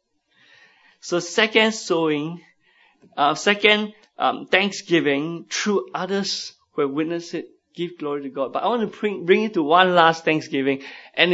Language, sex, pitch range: English, male, 145-190 Hz